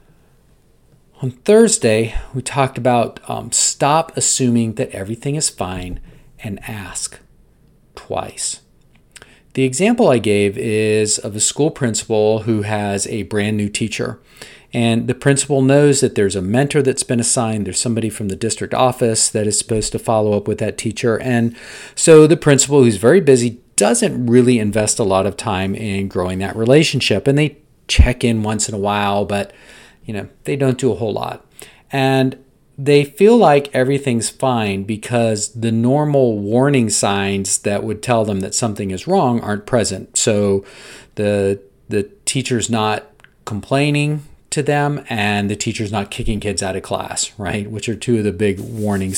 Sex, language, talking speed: male, English, 165 wpm